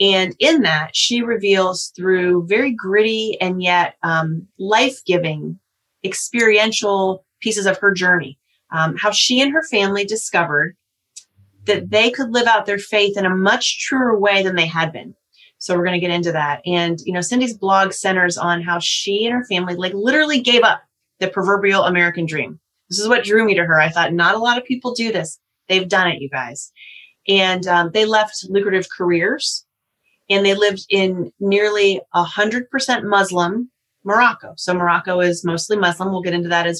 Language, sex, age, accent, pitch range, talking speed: English, female, 30-49, American, 175-210 Hz, 185 wpm